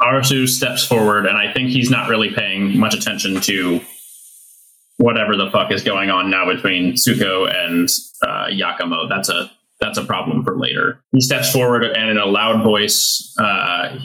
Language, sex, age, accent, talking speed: English, male, 20-39, American, 175 wpm